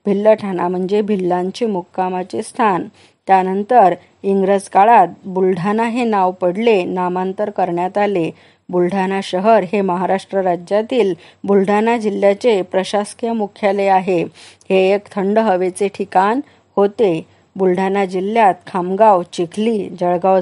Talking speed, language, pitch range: 105 wpm, Marathi, 180-210 Hz